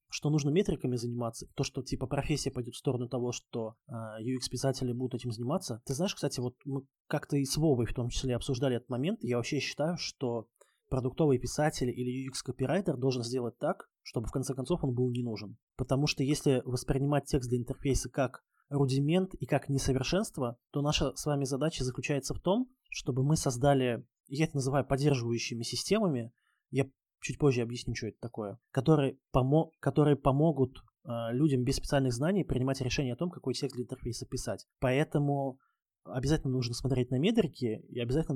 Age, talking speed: 20-39, 170 wpm